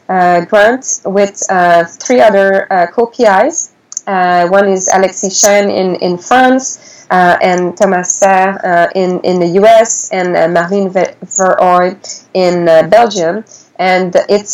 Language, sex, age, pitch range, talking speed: English, female, 20-39, 180-210 Hz, 150 wpm